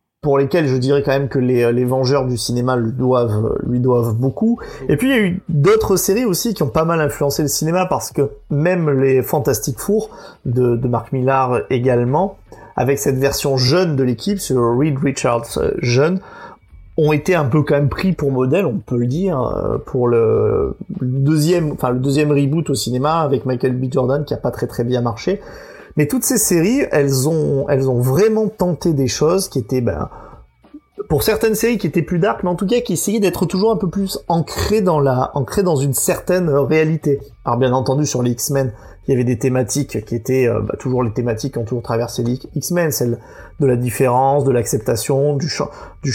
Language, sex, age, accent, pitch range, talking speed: French, male, 30-49, French, 125-170 Hz, 210 wpm